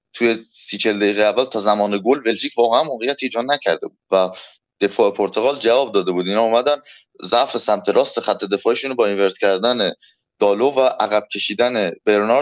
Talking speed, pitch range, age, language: 165 wpm, 105-125 Hz, 20-39, Persian